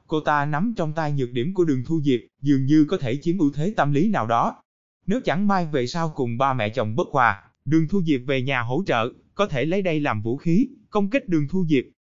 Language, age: Vietnamese, 20-39